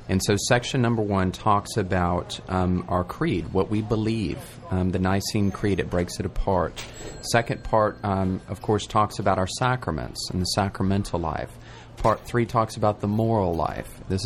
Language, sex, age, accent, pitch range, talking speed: English, male, 30-49, American, 95-120 Hz, 175 wpm